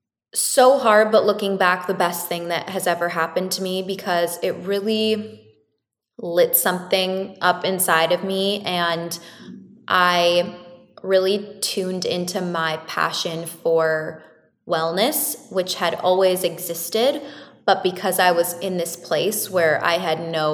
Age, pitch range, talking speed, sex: 20-39, 165-200 Hz, 135 wpm, female